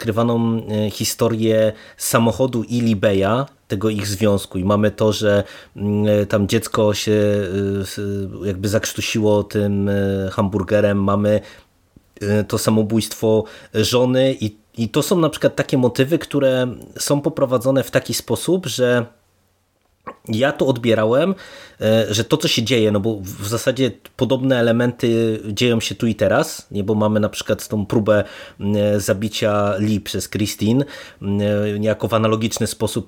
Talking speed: 130 wpm